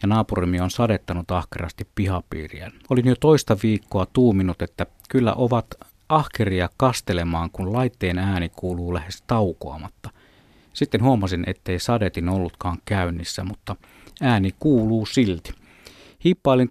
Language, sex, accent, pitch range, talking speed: Finnish, male, native, 90-120 Hz, 120 wpm